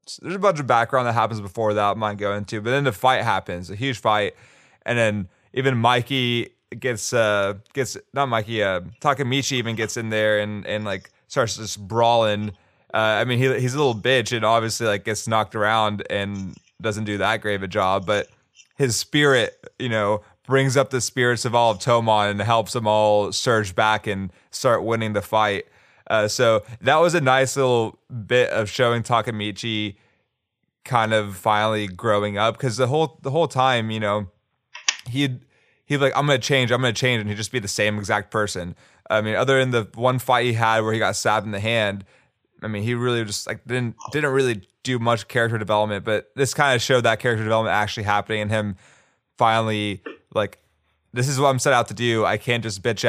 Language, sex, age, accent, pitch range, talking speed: English, male, 20-39, American, 105-125 Hz, 210 wpm